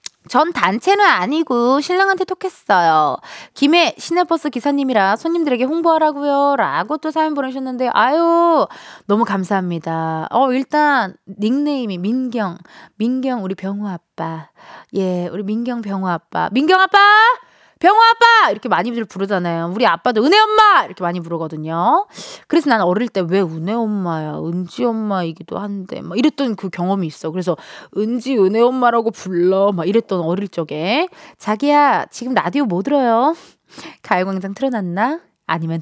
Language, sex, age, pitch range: Korean, female, 20-39, 185-295 Hz